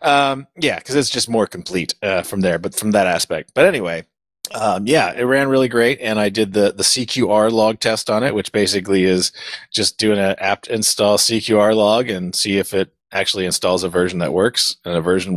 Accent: American